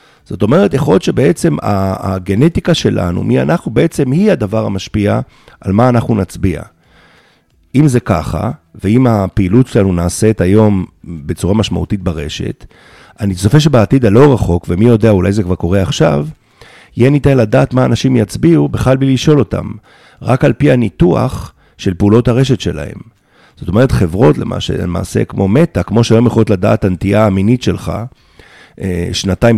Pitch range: 95-130 Hz